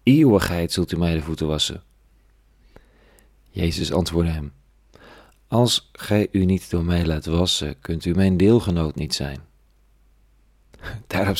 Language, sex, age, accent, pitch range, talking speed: Dutch, male, 40-59, Dutch, 80-105 Hz, 130 wpm